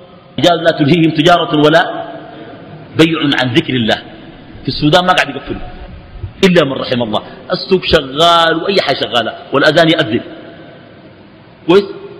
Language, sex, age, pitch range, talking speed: Arabic, male, 50-69, 150-230 Hz, 130 wpm